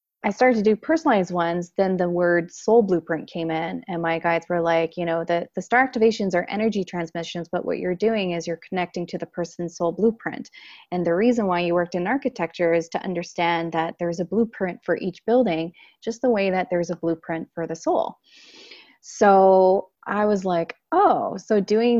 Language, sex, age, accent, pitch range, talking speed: English, female, 20-39, American, 170-195 Hz, 200 wpm